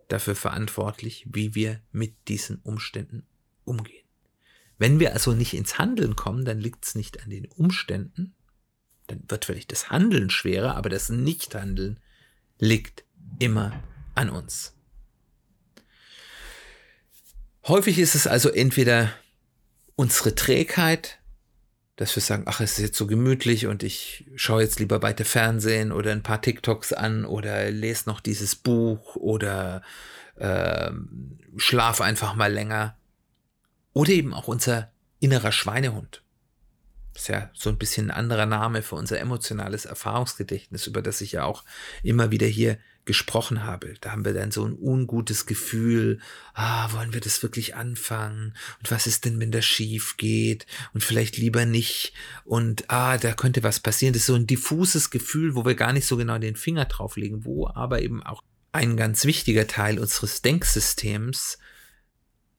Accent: German